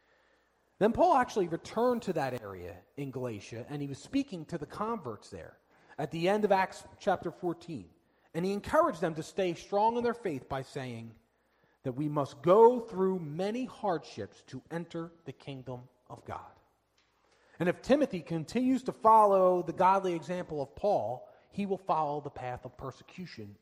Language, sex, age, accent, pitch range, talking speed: English, male, 40-59, American, 135-205 Hz, 170 wpm